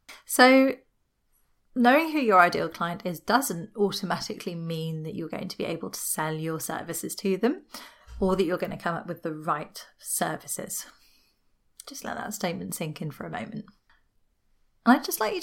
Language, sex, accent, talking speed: English, female, British, 180 wpm